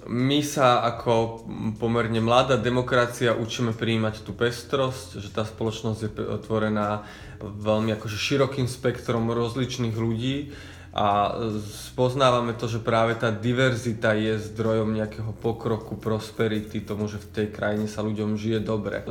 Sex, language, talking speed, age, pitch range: male, Slovak, 130 wpm, 20-39, 110-120 Hz